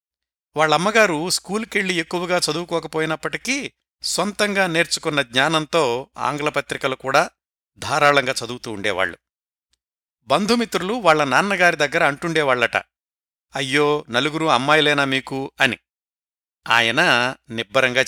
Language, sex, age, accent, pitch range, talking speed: Telugu, male, 60-79, native, 120-170 Hz, 85 wpm